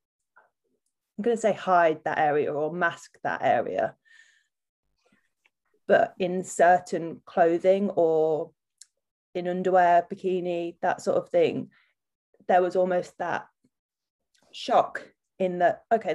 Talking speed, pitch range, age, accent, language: 110 wpm, 180-230 Hz, 20-39, British, English